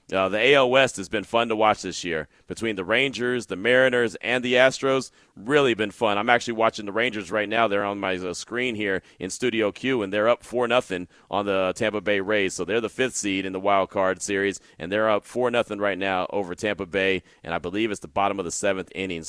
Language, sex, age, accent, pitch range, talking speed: English, male, 30-49, American, 95-125 Hz, 245 wpm